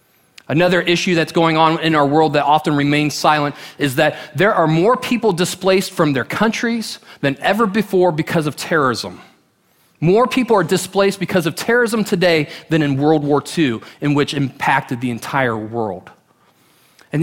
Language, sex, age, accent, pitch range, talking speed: English, male, 30-49, American, 145-190 Hz, 165 wpm